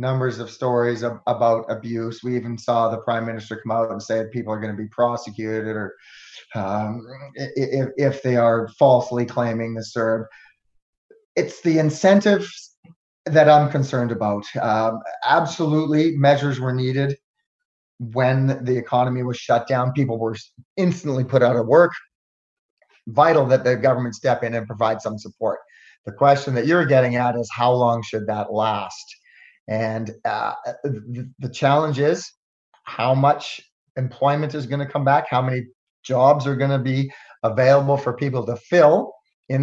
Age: 30-49